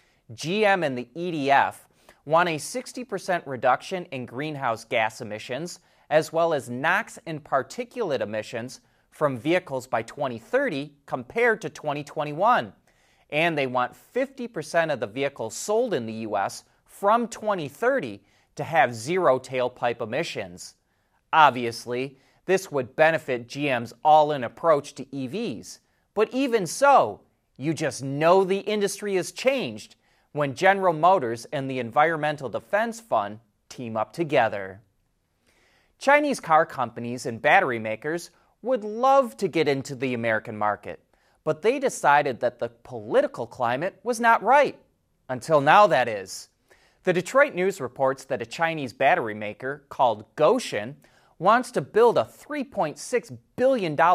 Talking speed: 130 wpm